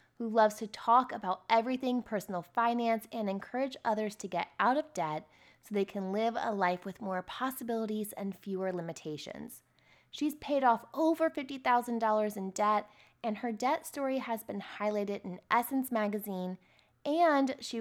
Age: 20-39